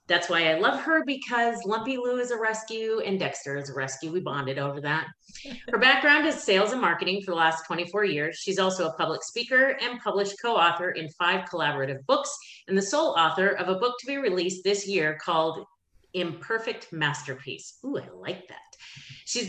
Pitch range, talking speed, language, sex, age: 165-230 Hz, 195 wpm, English, female, 30-49